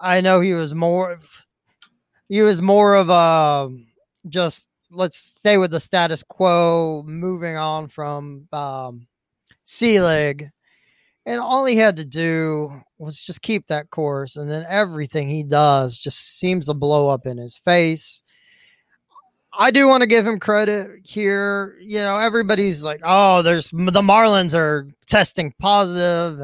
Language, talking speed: English, 150 wpm